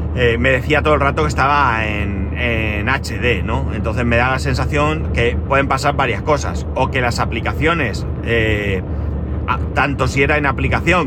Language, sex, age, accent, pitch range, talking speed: Spanish, male, 30-49, Spanish, 95-125 Hz, 175 wpm